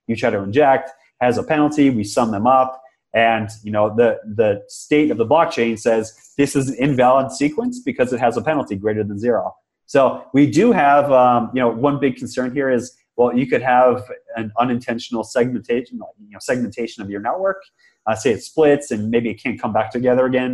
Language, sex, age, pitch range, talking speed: English, male, 30-49, 110-135 Hz, 205 wpm